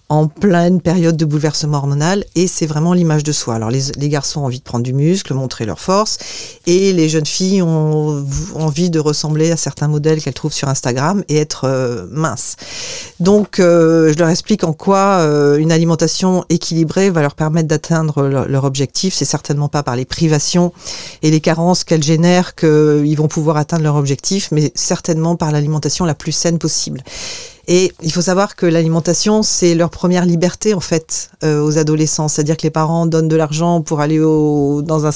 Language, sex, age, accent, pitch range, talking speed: French, female, 40-59, French, 150-175 Hz, 195 wpm